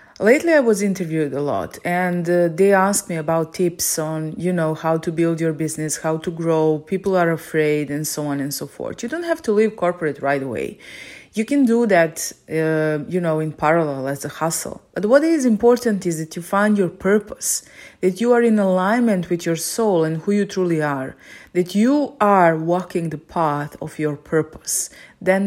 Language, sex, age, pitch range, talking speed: English, female, 30-49, 160-205 Hz, 205 wpm